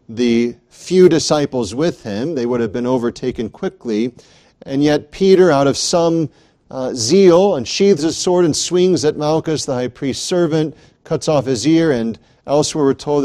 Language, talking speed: English, 170 wpm